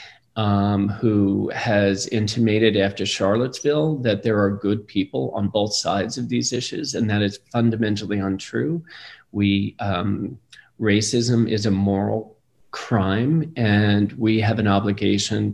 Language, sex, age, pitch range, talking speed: English, male, 40-59, 105-120 Hz, 130 wpm